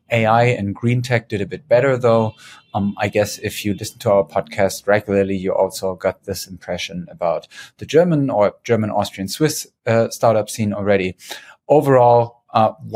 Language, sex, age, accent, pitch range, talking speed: English, male, 30-49, German, 100-120 Hz, 160 wpm